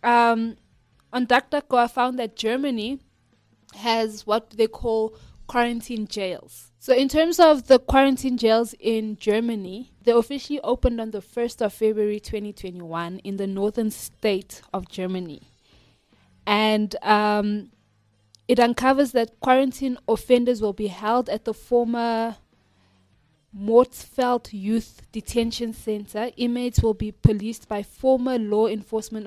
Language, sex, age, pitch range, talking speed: English, female, 20-39, 205-240 Hz, 125 wpm